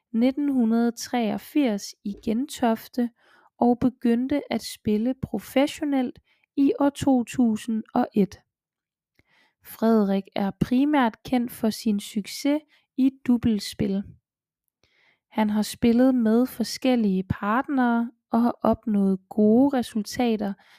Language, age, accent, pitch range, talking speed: Danish, 20-39, native, 210-255 Hz, 90 wpm